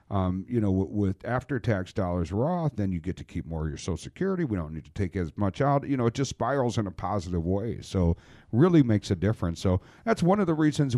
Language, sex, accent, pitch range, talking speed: English, male, American, 95-125 Hz, 245 wpm